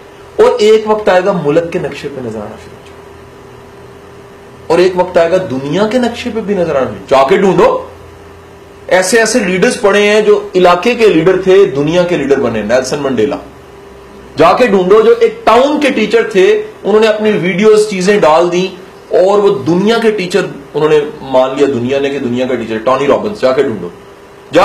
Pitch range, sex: 155-220 Hz, male